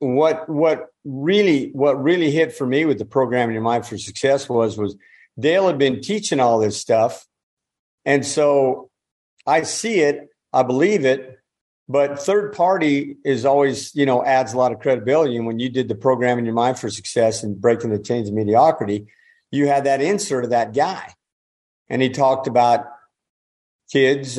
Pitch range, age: 115-135 Hz, 50-69